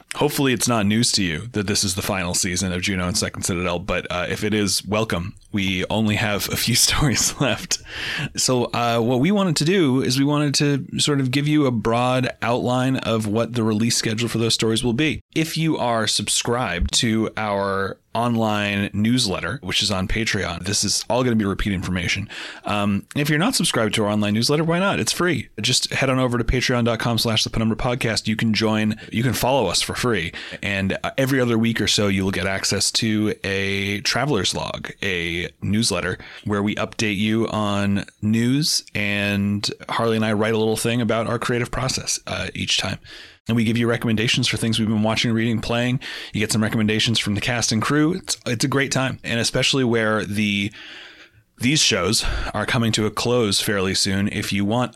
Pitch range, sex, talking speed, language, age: 100-120 Hz, male, 205 wpm, English, 30-49